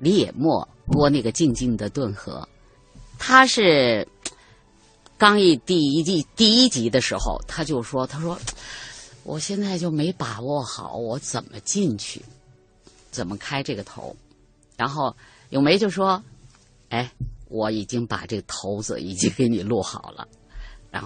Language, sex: Chinese, female